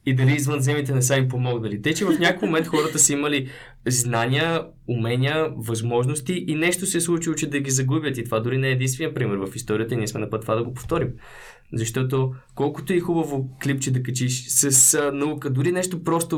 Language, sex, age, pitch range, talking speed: Bulgarian, male, 20-39, 120-150 Hz, 215 wpm